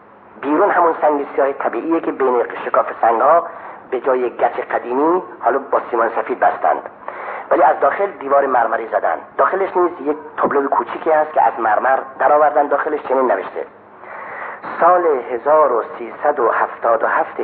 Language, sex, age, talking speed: Persian, male, 40-59, 140 wpm